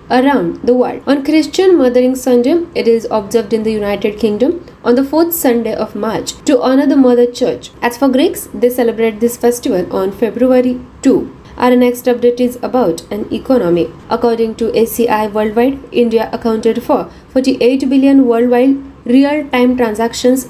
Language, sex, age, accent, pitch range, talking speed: Marathi, female, 20-39, native, 235-275 Hz, 160 wpm